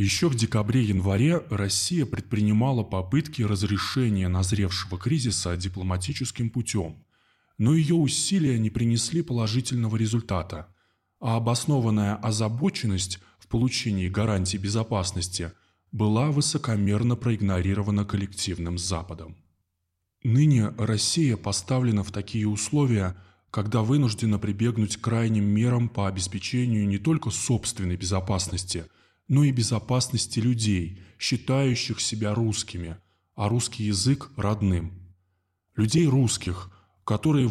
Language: Russian